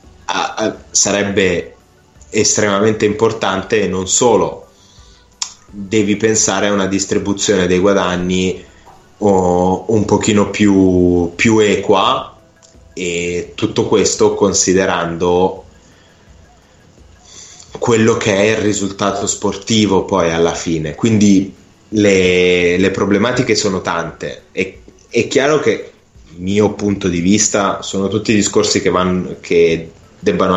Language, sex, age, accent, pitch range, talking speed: Italian, male, 20-39, native, 85-100 Hz, 110 wpm